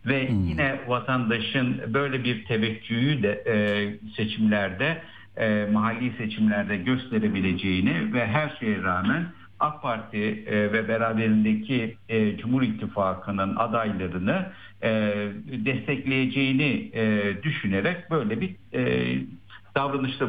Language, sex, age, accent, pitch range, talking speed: Turkish, male, 60-79, native, 105-135 Hz, 100 wpm